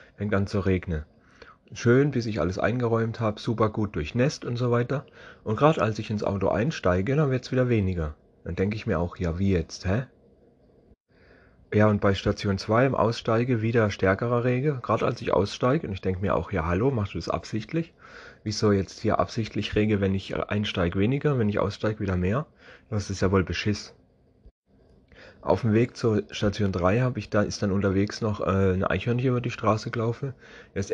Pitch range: 95-115 Hz